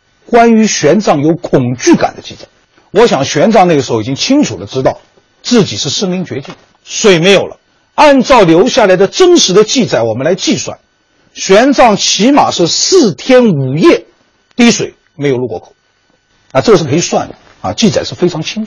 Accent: native